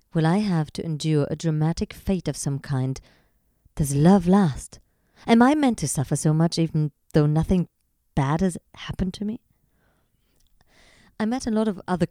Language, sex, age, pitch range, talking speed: English, female, 30-49, 150-205 Hz, 175 wpm